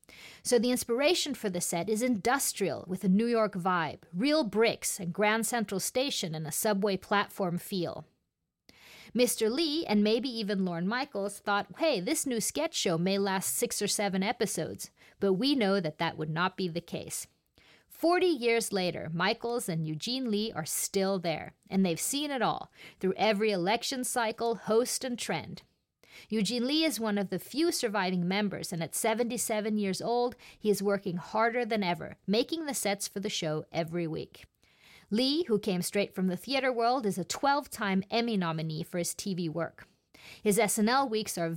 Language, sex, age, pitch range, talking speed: English, female, 50-69, 185-240 Hz, 180 wpm